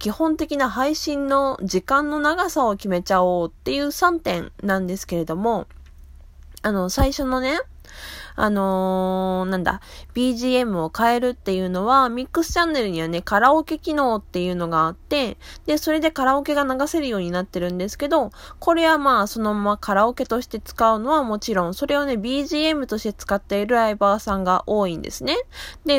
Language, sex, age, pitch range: Japanese, female, 20-39, 190-270 Hz